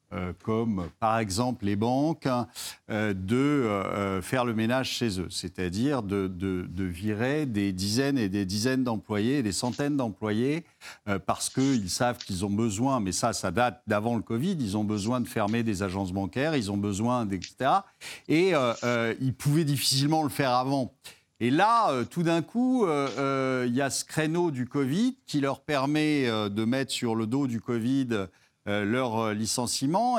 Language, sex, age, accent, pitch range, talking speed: French, male, 50-69, French, 110-145 Hz, 185 wpm